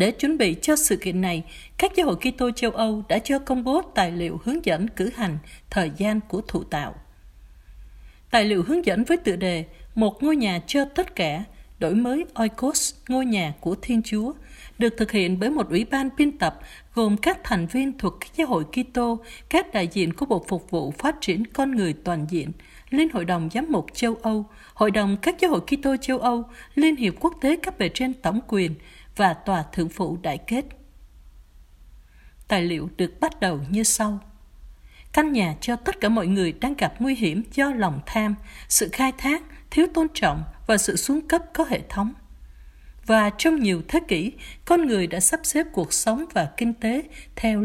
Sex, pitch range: female, 180-270 Hz